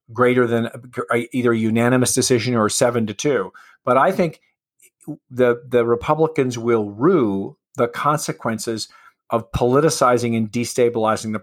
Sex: male